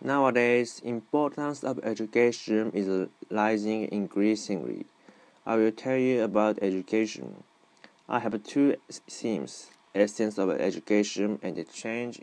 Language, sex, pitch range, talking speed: English, male, 95-115 Hz, 110 wpm